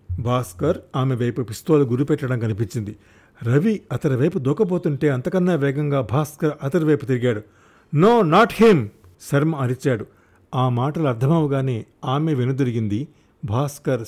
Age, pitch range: 50-69, 110-140 Hz